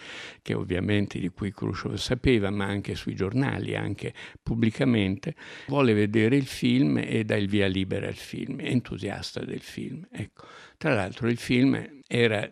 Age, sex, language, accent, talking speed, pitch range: 60-79, male, Italian, native, 160 wpm, 100-125 Hz